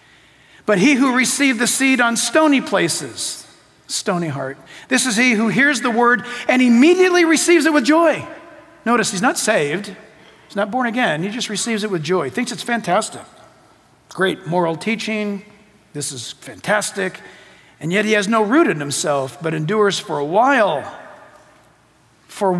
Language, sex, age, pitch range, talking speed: English, male, 50-69, 210-250 Hz, 165 wpm